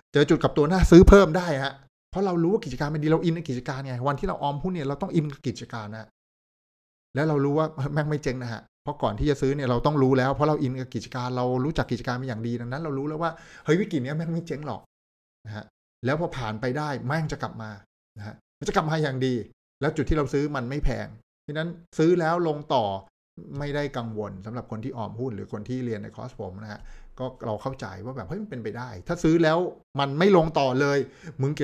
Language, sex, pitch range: Thai, male, 115-150 Hz